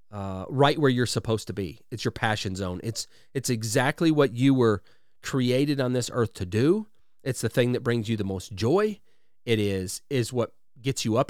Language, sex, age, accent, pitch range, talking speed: English, male, 30-49, American, 110-150 Hz, 200 wpm